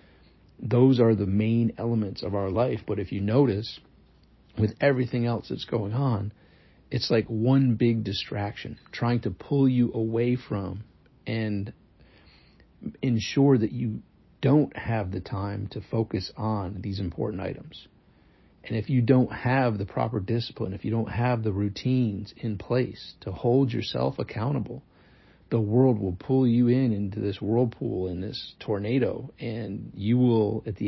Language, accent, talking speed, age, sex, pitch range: English, American, 155 wpm, 40-59, male, 100-120 Hz